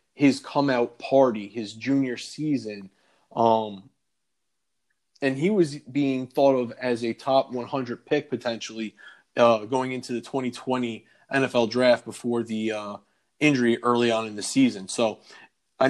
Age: 20-39